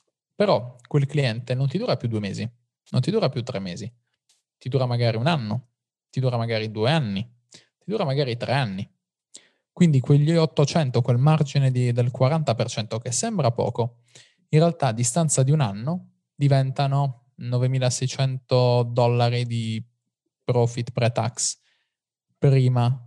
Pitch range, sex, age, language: 120-140 Hz, male, 20-39, Italian